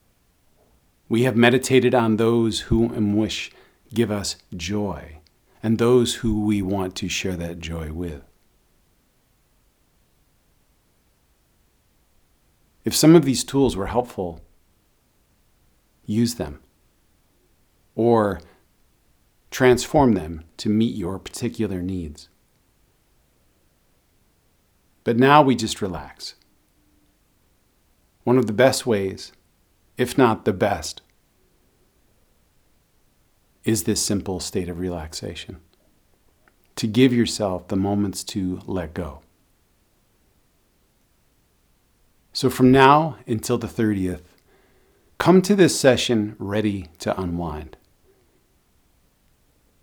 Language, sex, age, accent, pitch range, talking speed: English, male, 50-69, American, 90-115 Hz, 95 wpm